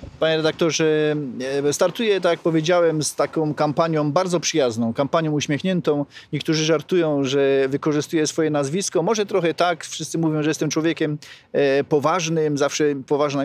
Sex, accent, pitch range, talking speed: male, native, 155-185 Hz, 135 wpm